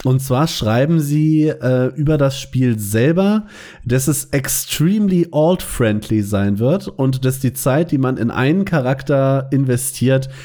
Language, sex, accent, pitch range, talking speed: German, male, German, 115-150 Hz, 150 wpm